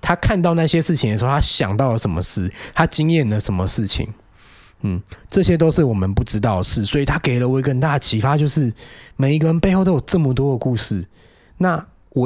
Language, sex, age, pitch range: Chinese, male, 20-39, 105-140 Hz